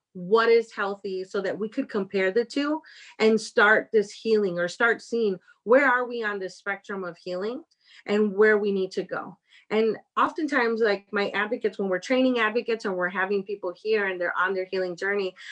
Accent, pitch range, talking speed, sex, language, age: American, 195-235 Hz, 195 wpm, female, English, 30-49